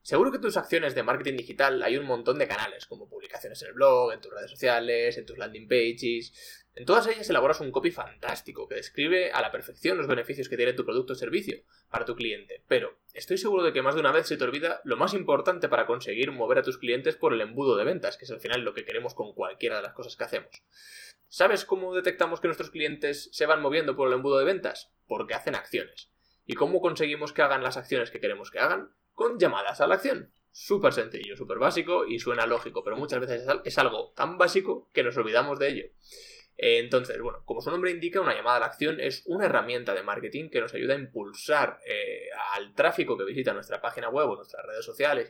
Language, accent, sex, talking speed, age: Spanish, Spanish, male, 230 wpm, 20-39